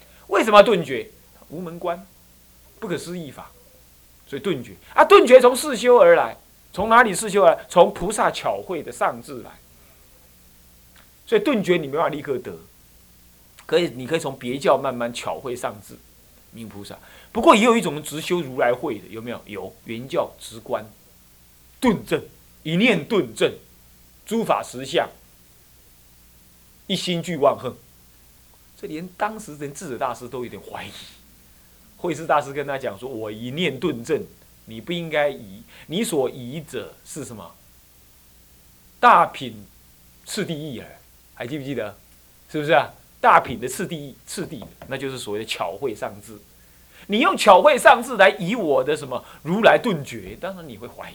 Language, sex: Chinese, male